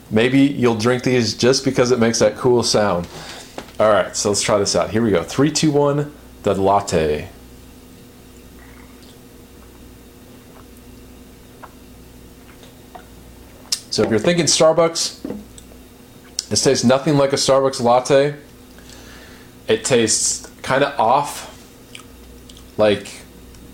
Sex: male